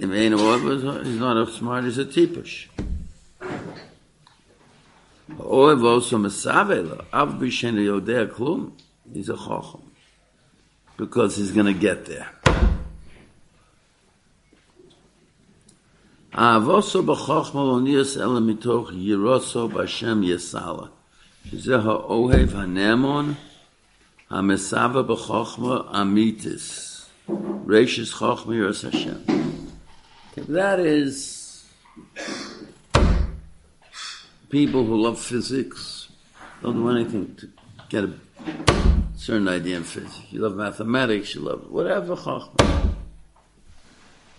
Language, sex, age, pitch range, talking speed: English, male, 60-79, 90-120 Hz, 60 wpm